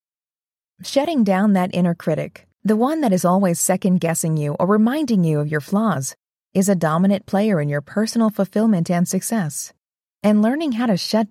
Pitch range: 170-230 Hz